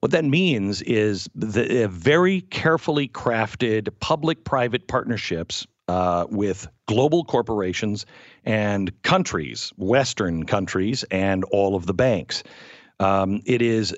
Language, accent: English, American